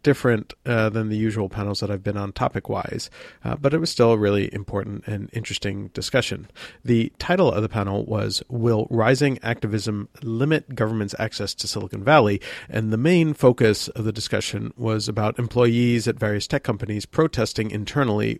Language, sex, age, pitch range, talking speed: English, male, 40-59, 105-120 Hz, 170 wpm